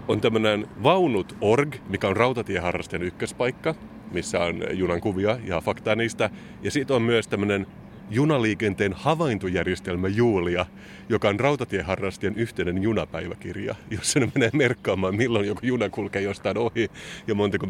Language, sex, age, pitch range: Finnish, male, 30-49, 95-115 Hz